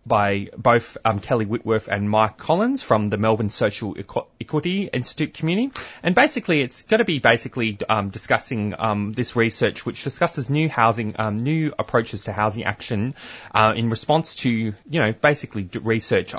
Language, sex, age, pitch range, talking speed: English, male, 20-39, 105-130 Hz, 165 wpm